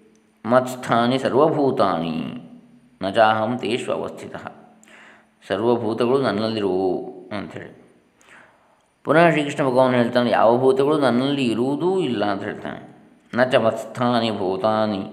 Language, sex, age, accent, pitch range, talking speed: Kannada, male, 20-39, native, 100-125 Hz, 90 wpm